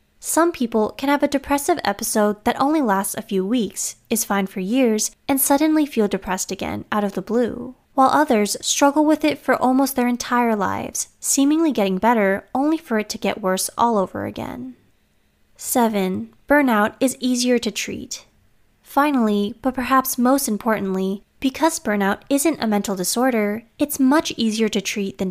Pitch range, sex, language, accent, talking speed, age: 205-270 Hz, female, English, American, 170 wpm, 10-29